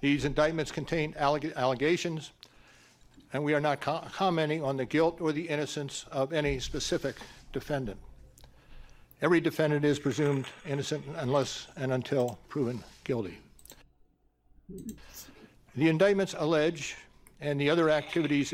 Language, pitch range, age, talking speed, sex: English, 135-160 Hz, 60-79, 115 wpm, male